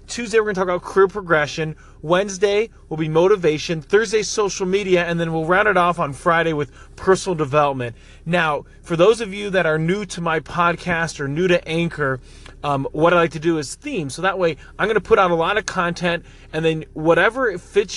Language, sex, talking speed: English, male, 215 wpm